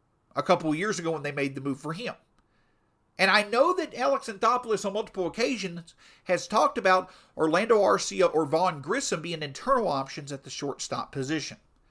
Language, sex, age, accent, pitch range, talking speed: English, male, 50-69, American, 145-205 Hz, 180 wpm